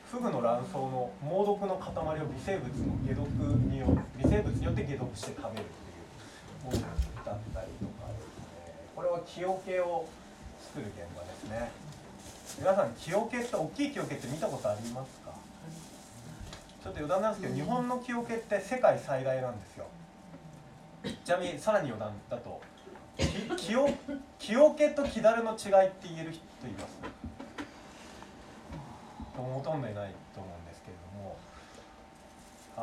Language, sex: Japanese, male